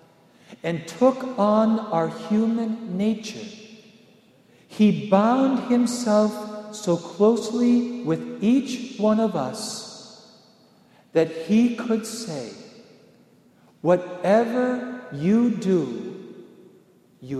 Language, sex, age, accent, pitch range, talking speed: English, male, 50-69, American, 165-220 Hz, 85 wpm